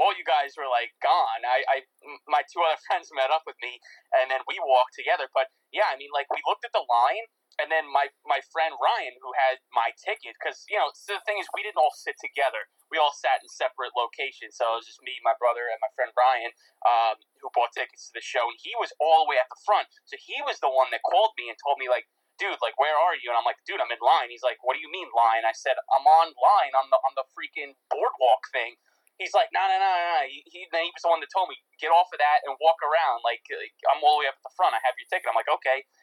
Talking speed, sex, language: 275 wpm, male, English